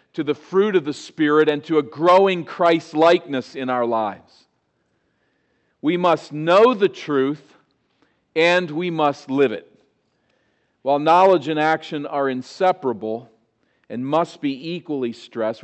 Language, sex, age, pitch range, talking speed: English, male, 50-69, 135-185 Hz, 135 wpm